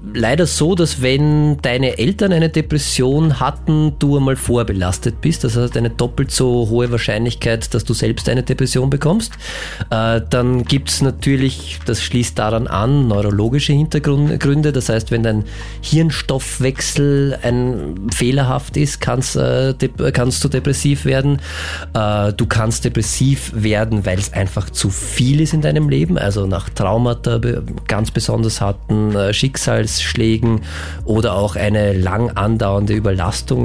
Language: German